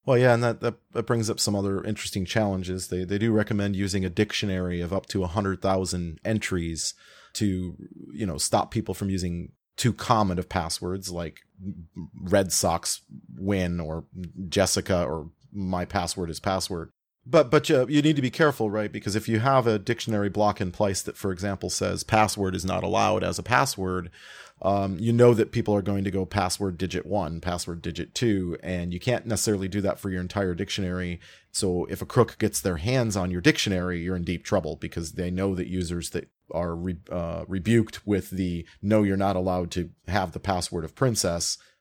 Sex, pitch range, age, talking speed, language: male, 90-110 Hz, 30-49, 195 wpm, English